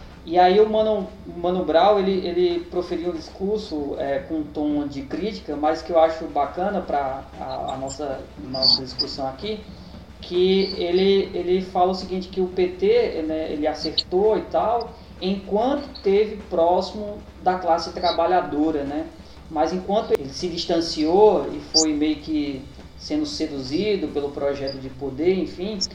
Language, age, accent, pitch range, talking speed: Portuguese, 20-39, Brazilian, 150-185 Hz, 150 wpm